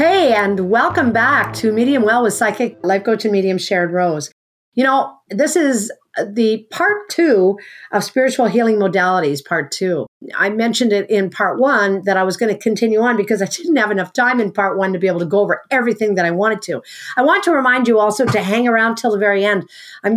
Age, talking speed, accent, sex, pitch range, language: 50-69, 225 wpm, American, female, 195-240 Hz, English